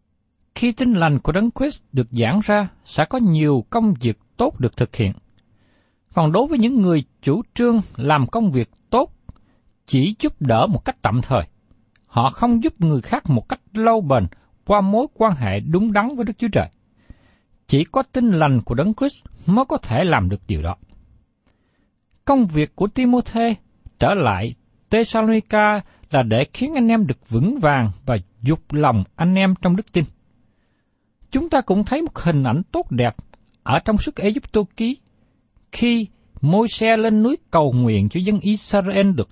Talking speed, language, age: 180 wpm, Vietnamese, 60-79